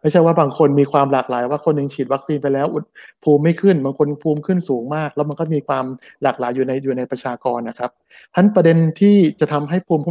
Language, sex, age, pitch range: Thai, male, 60-79, 135-160 Hz